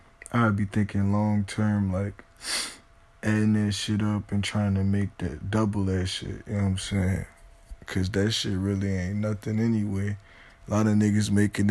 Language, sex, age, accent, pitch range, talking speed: English, male, 20-39, American, 95-110 Hz, 180 wpm